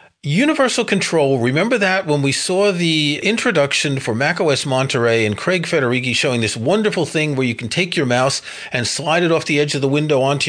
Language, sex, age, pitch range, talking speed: English, male, 40-59, 130-175 Hz, 200 wpm